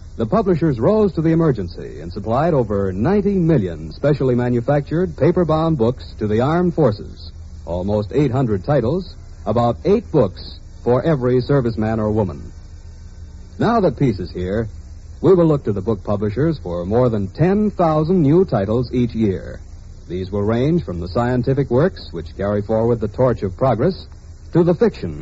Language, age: English, 60-79